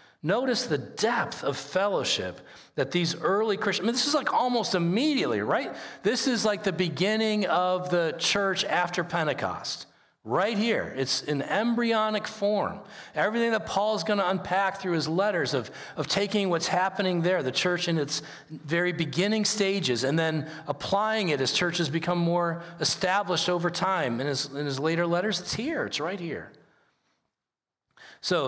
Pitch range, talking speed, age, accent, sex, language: 125-185 Hz, 160 wpm, 40-59, American, male, English